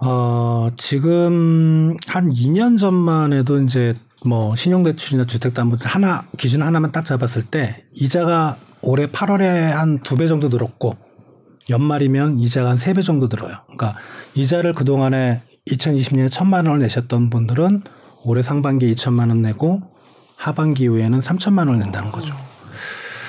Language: Korean